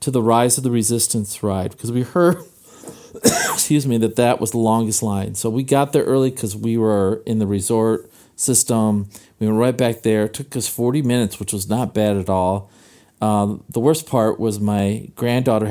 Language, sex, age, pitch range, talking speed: English, male, 40-59, 105-130 Hz, 200 wpm